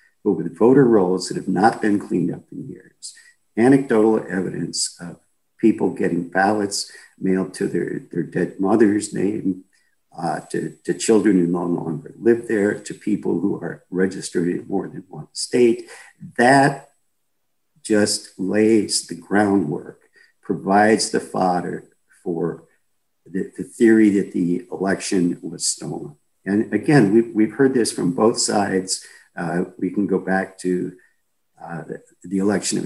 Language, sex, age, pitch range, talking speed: English, male, 50-69, 90-110 Hz, 150 wpm